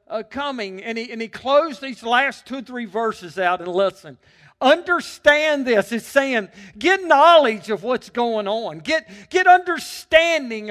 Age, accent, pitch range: 40-59, American, 150-240 Hz